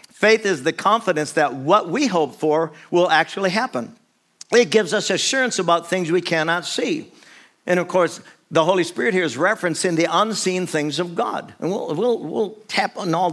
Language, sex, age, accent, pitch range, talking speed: English, male, 50-69, American, 165-215 Hz, 190 wpm